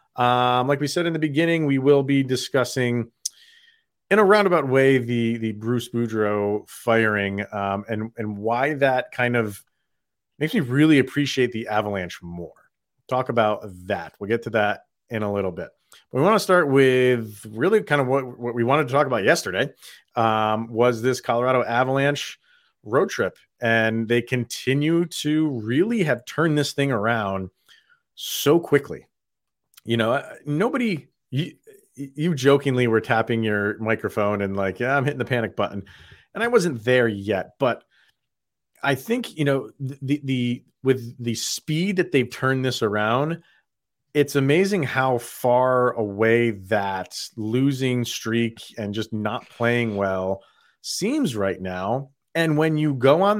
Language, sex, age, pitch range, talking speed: English, male, 30-49, 110-145 Hz, 155 wpm